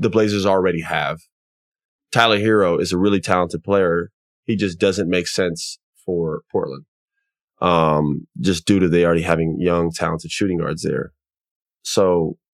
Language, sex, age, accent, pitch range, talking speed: English, male, 20-39, American, 90-105 Hz, 150 wpm